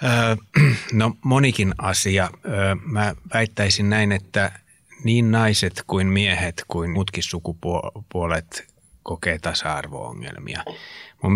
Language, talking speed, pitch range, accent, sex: Finnish, 90 wpm, 90-100 Hz, native, male